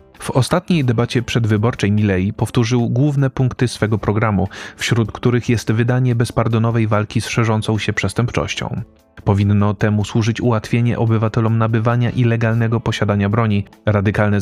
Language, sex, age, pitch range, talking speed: Polish, male, 30-49, 105-120 Hz, 125 wpm